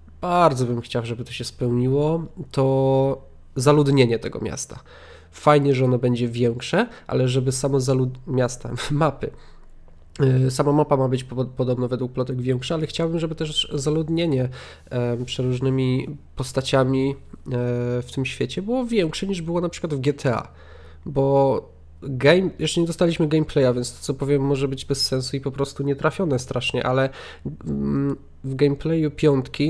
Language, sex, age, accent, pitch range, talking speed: Polish, male, 20-39, native, 125-155 Hz, 145 wpm